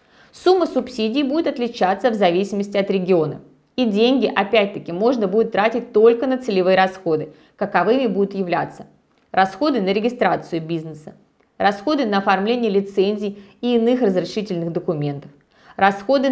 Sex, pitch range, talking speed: female, 185-240 Hz, 125 wpm